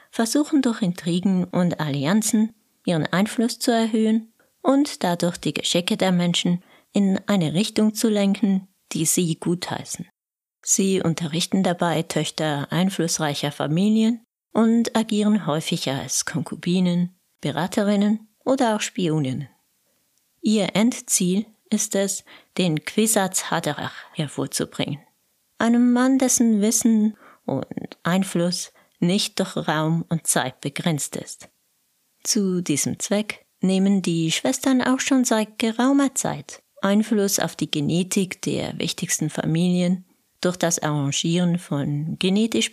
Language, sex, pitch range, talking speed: German, female, 170-220 Hz, 115 wpm